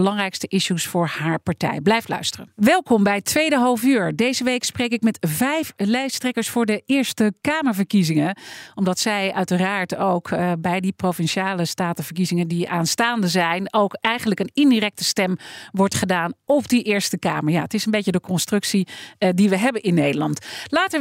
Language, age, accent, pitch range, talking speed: Dutch, 40-59, Dutch, 185-230 Hz, 175 wpm